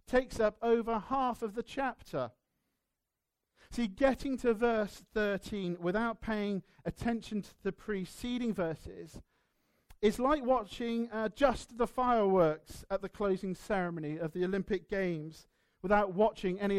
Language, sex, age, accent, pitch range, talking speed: English, male, 40-59, British, 175-235 Hz, 130 wpm